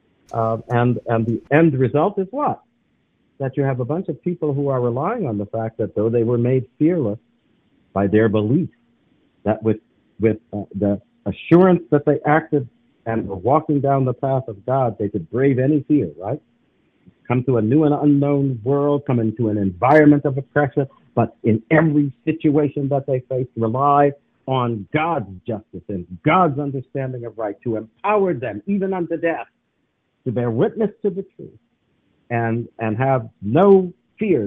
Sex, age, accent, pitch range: male, 50-69, American, 110-155 Hz